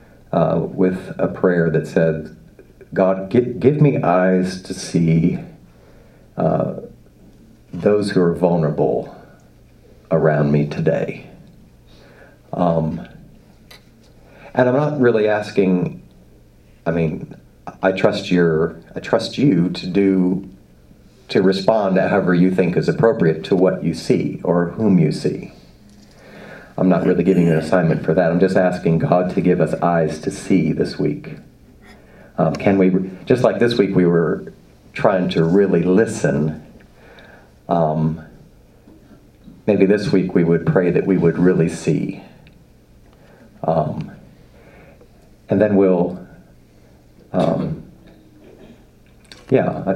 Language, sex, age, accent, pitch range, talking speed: English, male, 40-59, American, 80-95 Hz, 125 wpm